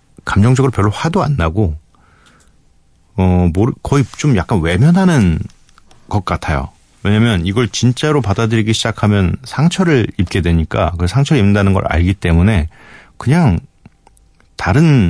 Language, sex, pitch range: Korean, male, 85-115 Hz